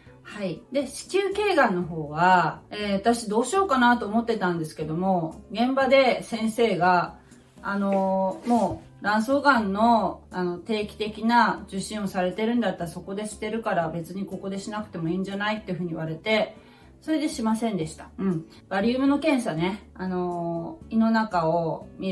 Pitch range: 180-230 Hz